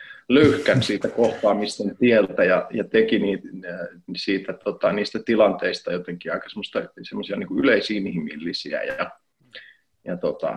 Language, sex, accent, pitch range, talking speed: Finnish, male, native, 100-130 Hz, 120 wpm